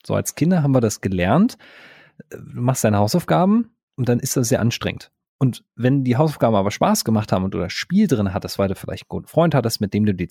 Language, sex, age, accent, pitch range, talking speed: German, male, 40-59, German, 105-135 Hz, 245 wpm